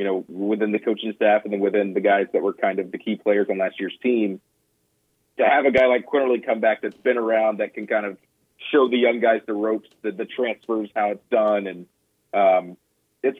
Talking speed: 235 wpm